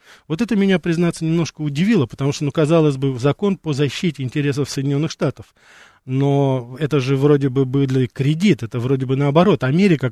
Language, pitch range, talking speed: Russian, 135-170 Hz, 170 wpm